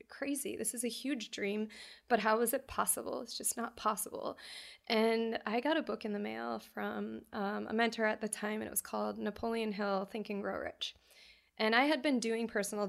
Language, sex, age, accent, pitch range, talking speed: English, female, 20-39, American, 195-230 Hz, 215 wpm